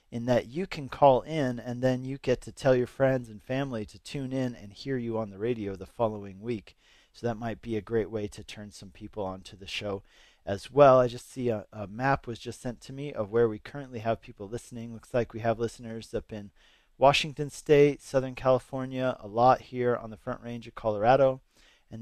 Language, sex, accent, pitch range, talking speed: English, male, American, 110-130 Hz, 225 wpm